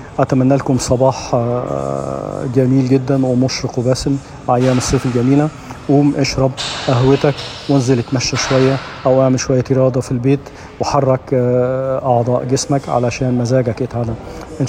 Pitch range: 125-140 Hz